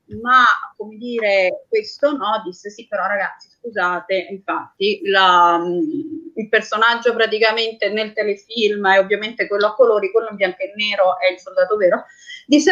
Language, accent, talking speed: Italian, native, 145 wpm